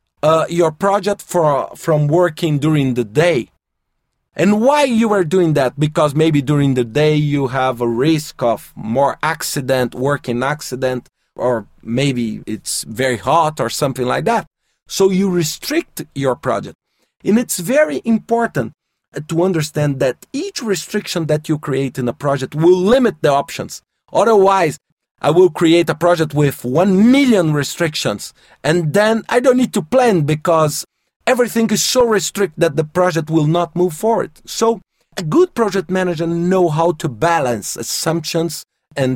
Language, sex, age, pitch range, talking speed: English, male, 40-59, 145-195 Hz, 160 wpm